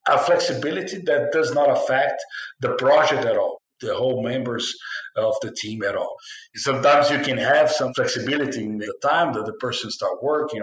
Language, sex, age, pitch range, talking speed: English, male, 50-69, 115-135 Hz, 180 wpm